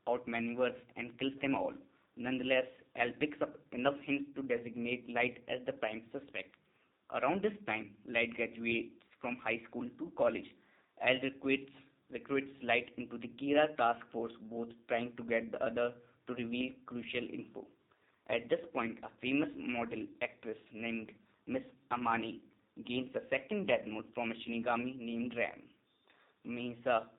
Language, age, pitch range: English, 20-39, 115-130 Hz